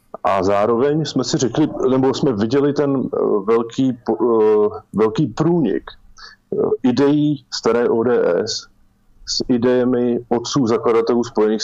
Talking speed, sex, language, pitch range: 105 wpm, male, Slovak, 100-125 Hz